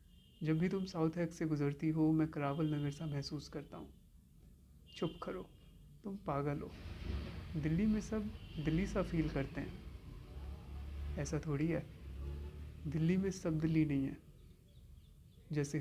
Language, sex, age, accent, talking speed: Hindi, male, 30-49, native, 145 wpm